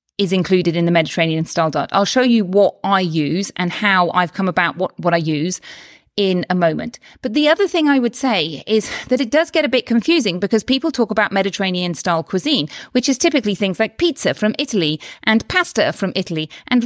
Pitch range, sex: 180-255 Hz, female